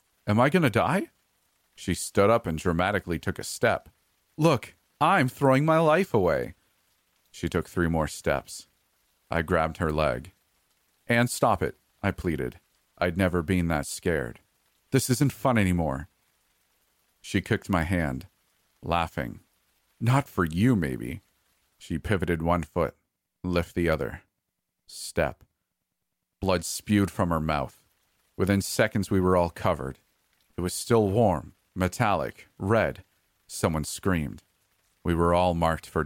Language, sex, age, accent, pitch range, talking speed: English, male, 40-59, American, 85-105 Hz, 140 wpm